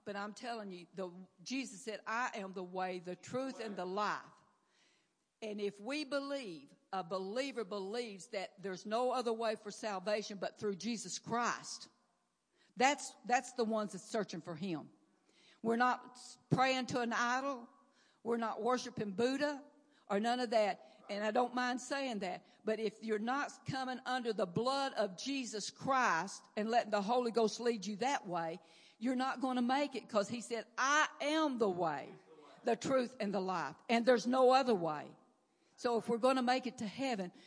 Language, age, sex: English, 60-79, female